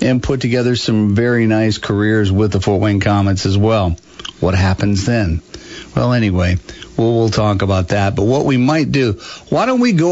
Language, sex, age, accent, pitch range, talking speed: English, male, 50-69, American, 100-120 Hz, 195 wpm